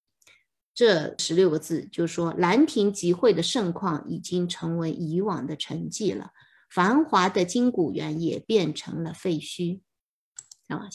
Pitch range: 170-220 Hz